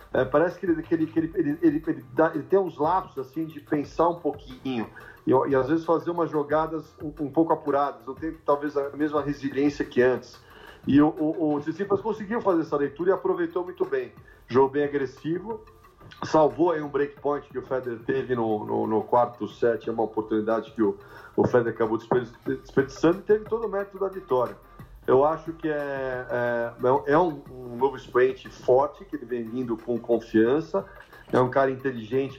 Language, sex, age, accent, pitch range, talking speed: Portuguese, male, 40-59, Brazilian, 120-155 Hz, 200 wpm